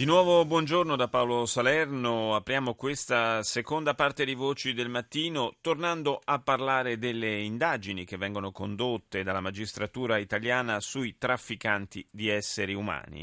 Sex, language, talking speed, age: male, Italian, 135 wpm, 30-49